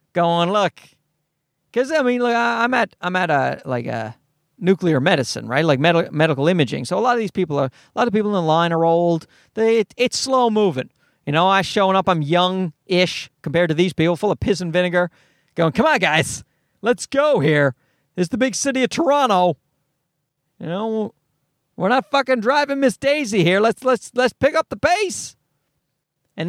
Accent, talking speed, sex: American, 200 wpm, male